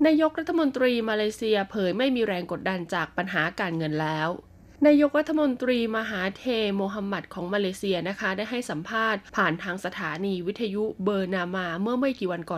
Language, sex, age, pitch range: Thai, female, 20-39, 185-230 Hz